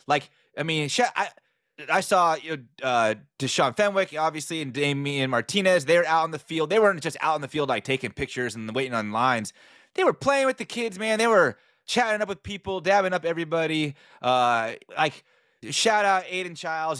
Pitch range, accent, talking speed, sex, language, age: 135-175 Hz, American, 200 wpm, male, English, 30-49